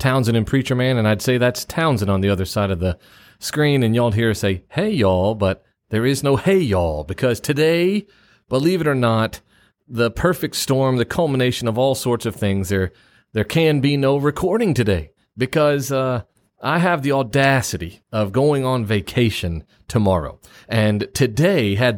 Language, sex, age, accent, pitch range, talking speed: English, male, 30-49, American, 105-145 Hz, 180 wpm